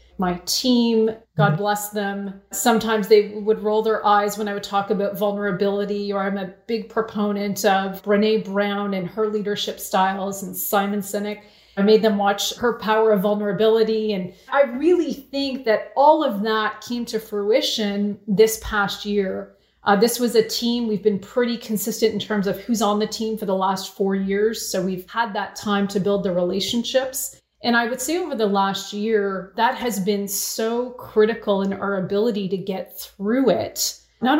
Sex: female